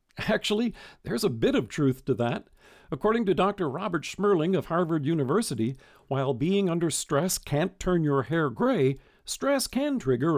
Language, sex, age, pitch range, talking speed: English, male, 50-69, 135-195 Hz, 160 wpm